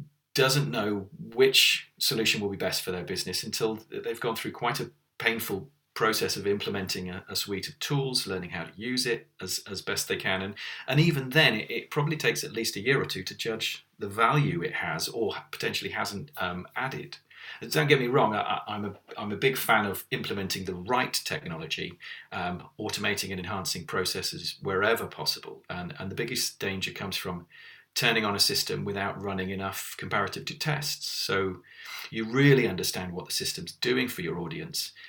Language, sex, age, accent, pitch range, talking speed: English, male, 40-59, British, 95-135 Hz, 190 wpm